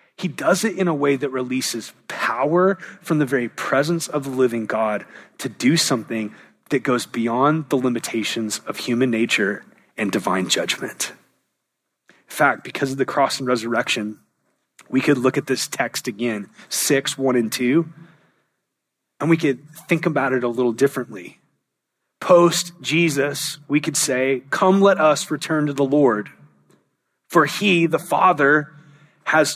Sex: male